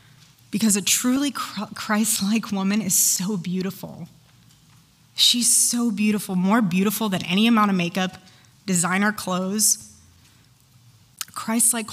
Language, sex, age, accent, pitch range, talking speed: English, female, 20-39, American, 180-230 Hz, 105 wpm